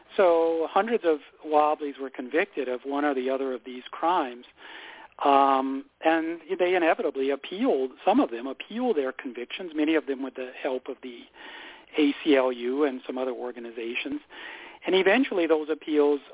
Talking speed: 155 wpm